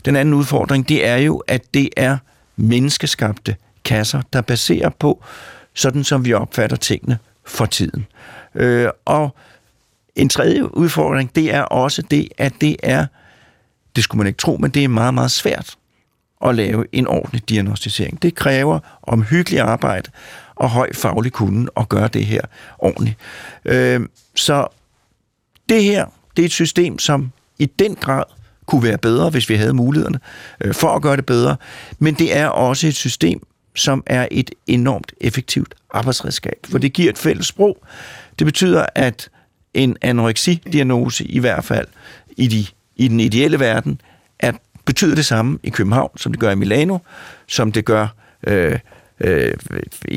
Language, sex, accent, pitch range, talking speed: Danish, male, native, 115-145 Hz, 160 wpm